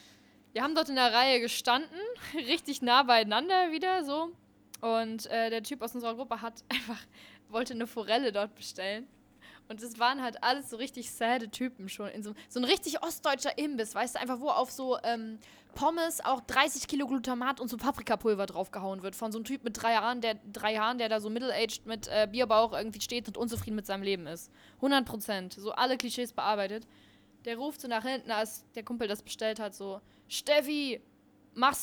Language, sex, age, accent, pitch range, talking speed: German, female, 10-29, German, 215-260 Hz, 200 wpm